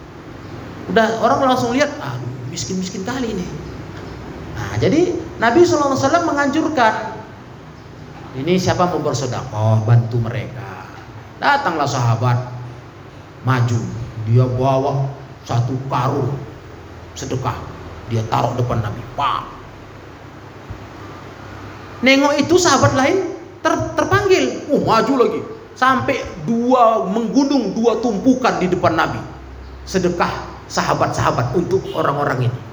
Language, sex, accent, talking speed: Indonesian, male, native, 105 wpm